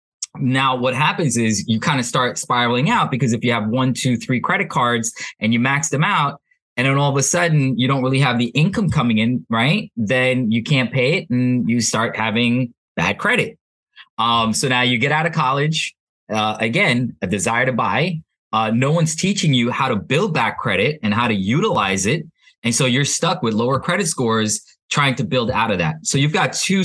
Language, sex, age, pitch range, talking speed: English, male, 20-39, 110-140 Hz, 215 wpm